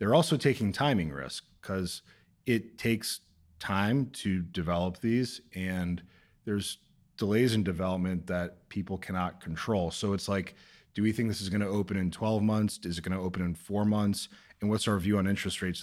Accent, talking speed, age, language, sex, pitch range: American, 180 wpm, 30-49, English, male, 90-110 Hz